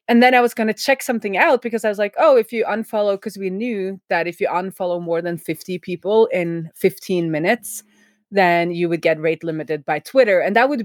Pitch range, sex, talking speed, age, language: 165-215 Hz, female, 230 wpm, 20-39, English